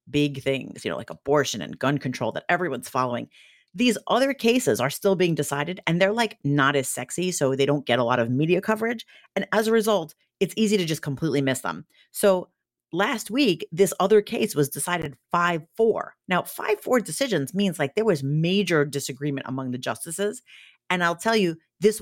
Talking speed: 195 wpm